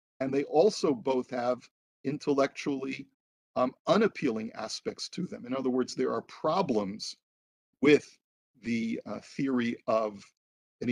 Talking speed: 125 wpm